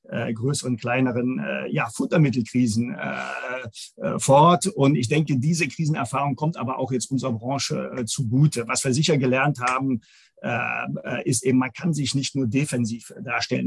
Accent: German